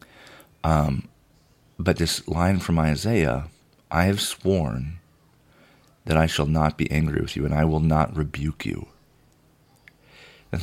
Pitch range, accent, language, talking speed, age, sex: 75-90 Hz, American, English, 135 wpm, 40-59, male